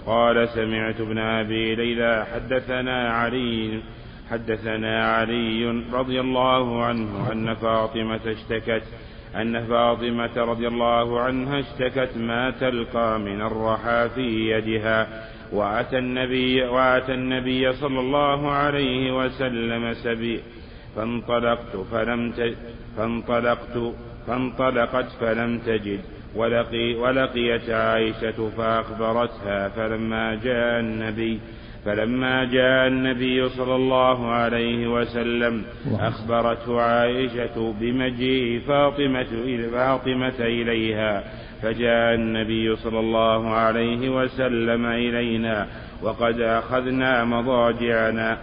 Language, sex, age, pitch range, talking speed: Arabic, male, 50-69, 110-125 Hz, 90 wpm